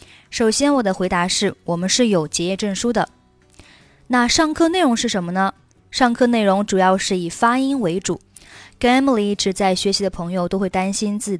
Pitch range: 180-235 Hz